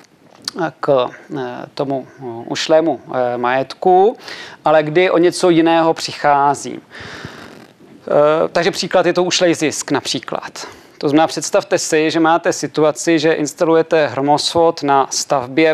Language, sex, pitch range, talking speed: Czech, male, 145-170 Hz, 110 wpm